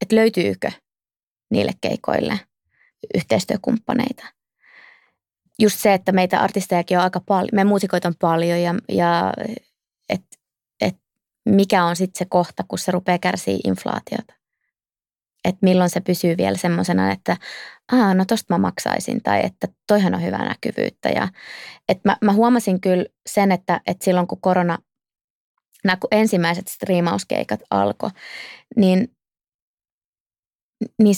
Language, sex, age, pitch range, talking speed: Finnish, female, 20-39, 180-210 Hz, 120 wpm